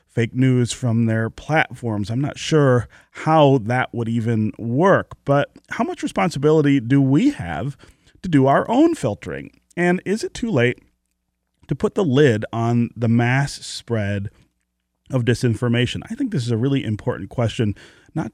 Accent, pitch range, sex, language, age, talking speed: American, 110-140 Hz, male, English, 30-49, 160 wpm